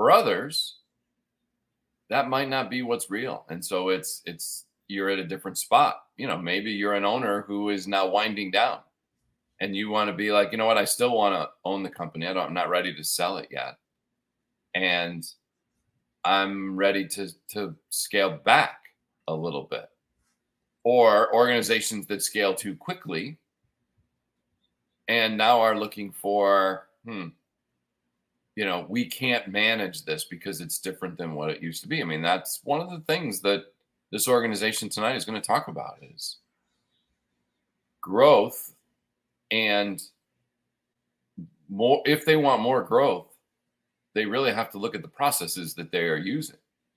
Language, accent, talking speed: English, American, 160 wpm